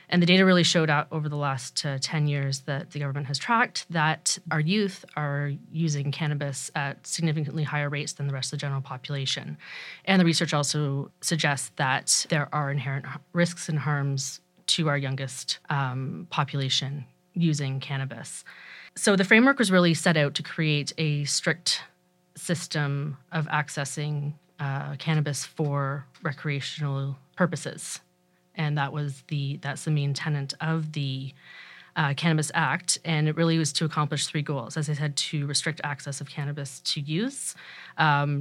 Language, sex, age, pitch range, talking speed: English, female, 30-49, 140-165 Hz, 160 wpm